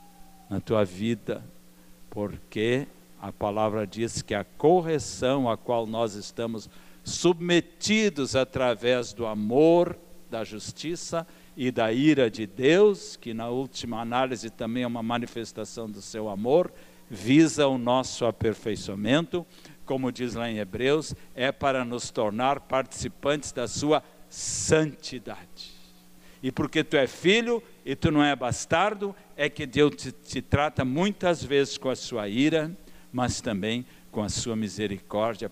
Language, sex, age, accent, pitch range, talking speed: Portuguese, male, 60-79, Brazilian, 100-140 Hz, 135 wpm